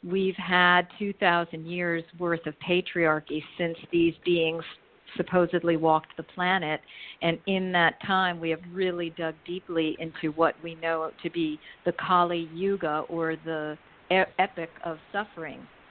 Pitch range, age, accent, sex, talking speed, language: 165-185 Hz, 50-69, American, female, 140 wpm, English